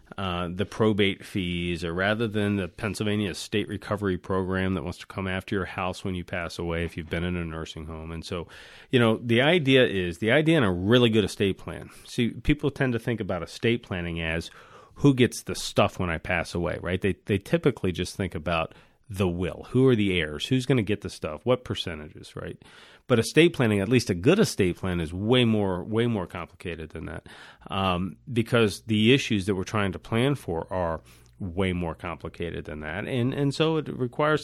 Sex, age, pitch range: male, 40-59, 90-120 Hz